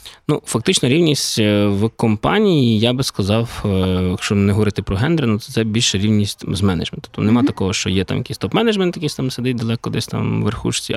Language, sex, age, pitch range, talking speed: Ukrainian, male, 20-39, 100-125 Hz, 180 wpm